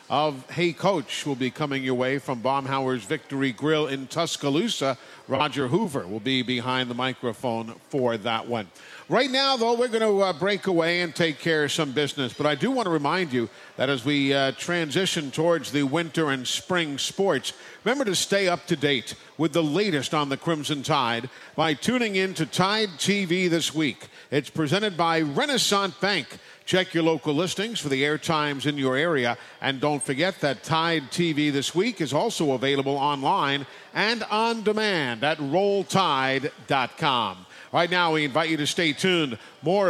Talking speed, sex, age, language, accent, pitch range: 180 wpm, male, 50-69, English, American, 140-185 Hz